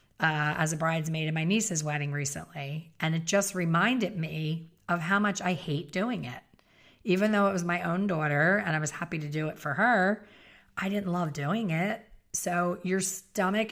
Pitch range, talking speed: 155-185 Hz, 195 wpm